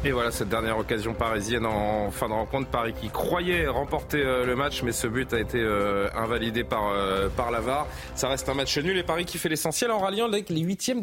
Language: French